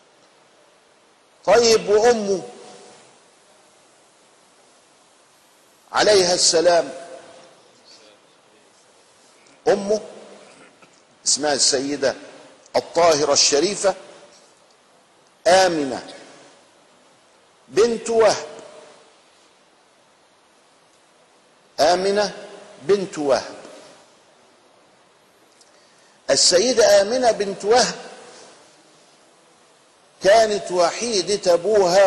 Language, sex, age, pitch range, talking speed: Arabic, male, 50-69, 165-205 Hz, 40 wpm